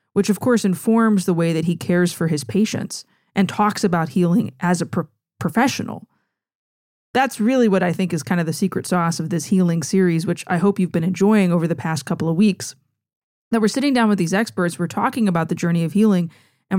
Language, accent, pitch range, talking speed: English, American, 170-205 Hz, 220 wpm